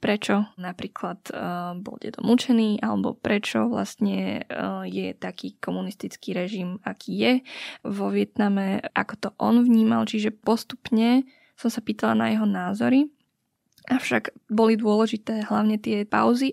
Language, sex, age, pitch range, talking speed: Slovak, female, 10-29, 200-235 Hz, 130 wpm